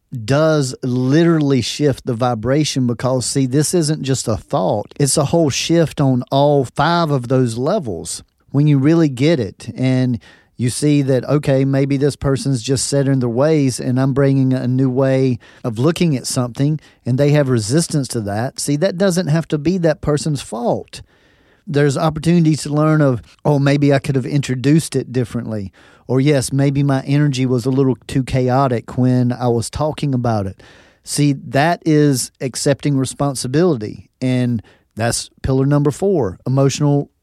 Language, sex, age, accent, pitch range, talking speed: English, male, 40-59, American, 125-150 Hz, 170 wpm